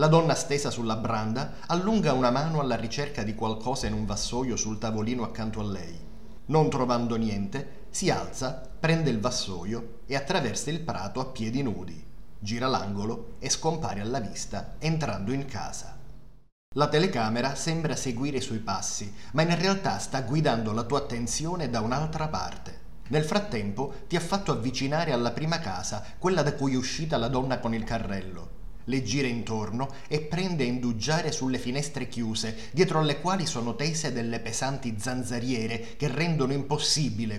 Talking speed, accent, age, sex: 165 wpm, native, 30-49, male